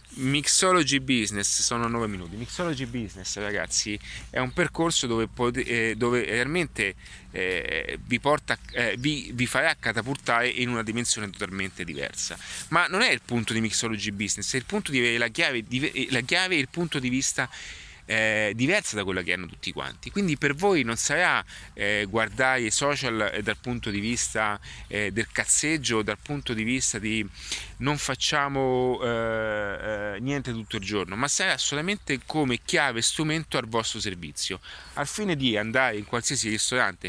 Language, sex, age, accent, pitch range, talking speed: Italian, male, 30-49, native, 110-135 Hz, 165 wpm